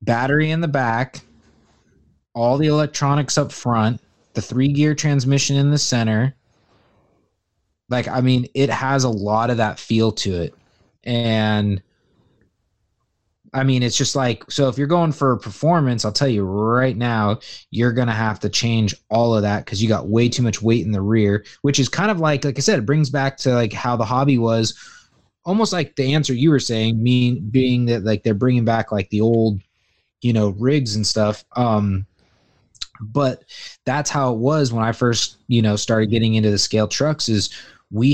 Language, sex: English, male